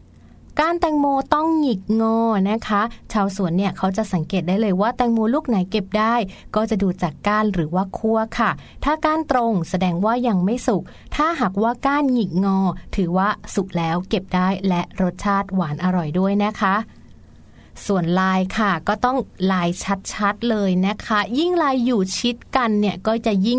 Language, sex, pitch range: Thai, female, 185-230 Hz